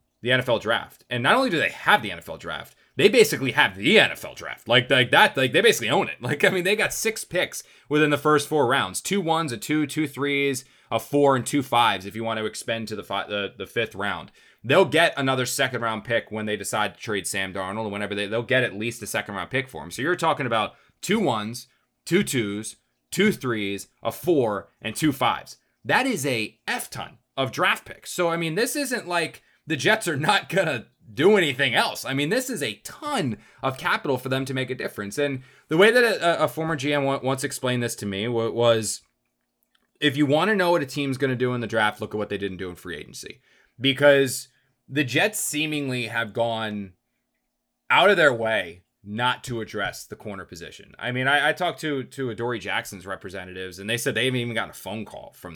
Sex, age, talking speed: male, 20-39, 230 wpm